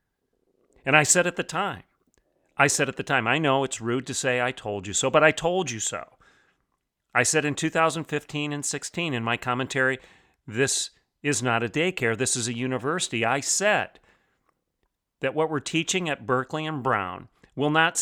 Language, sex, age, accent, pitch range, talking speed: English, male, 40-59, American, 130-155 Hz, 185 wpm